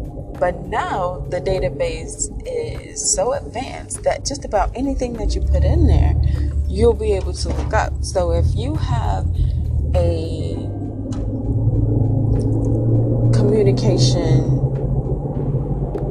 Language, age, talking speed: English, 20-39, 105 wpm